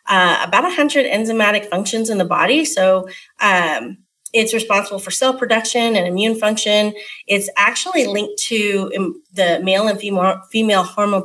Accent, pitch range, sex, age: American, 195-245 Hz, female, 30-49